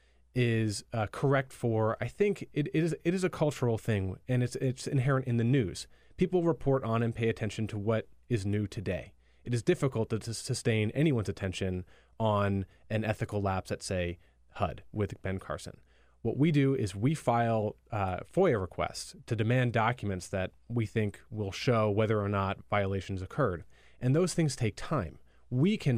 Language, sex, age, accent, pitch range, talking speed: English, male, 30-49, American, 105-125 Hz, 185 wpm